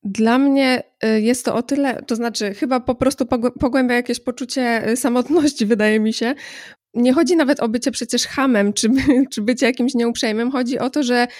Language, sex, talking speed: Polish, female, 180 wpm